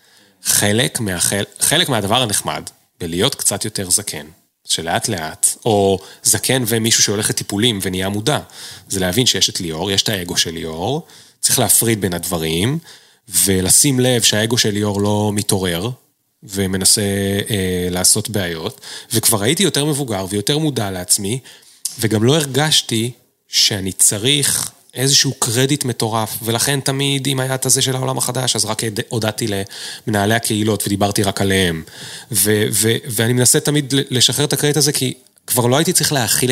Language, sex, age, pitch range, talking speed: Hebrew, male, 30-49, 100-135 Hz, 150 wpm